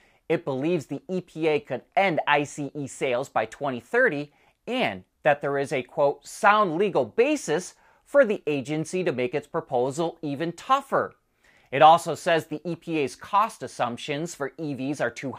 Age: 30-49